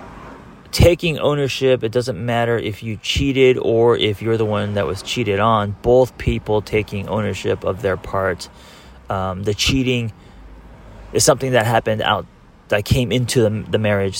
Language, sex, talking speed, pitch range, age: English, male, 160 wpm, 95-115 Hz, 30-49